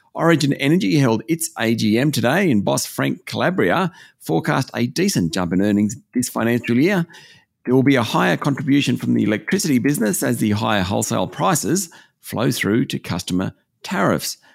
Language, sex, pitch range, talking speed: English, male, 110-160 Hz, 160 wpm